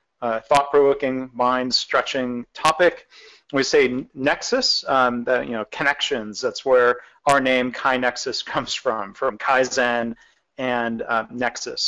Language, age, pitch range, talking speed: English, 40-59, 125-150 Hz, 120 wpm